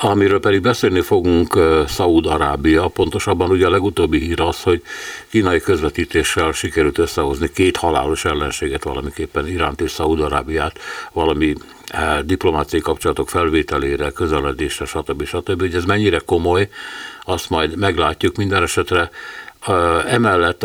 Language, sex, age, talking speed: Hungarian, male, 60-79, 115 wpm